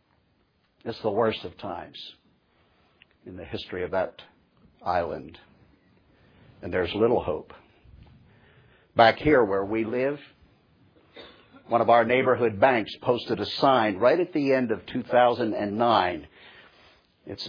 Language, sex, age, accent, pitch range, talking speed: English, male, 60-79, American, 125-185 Hz, 120 wpm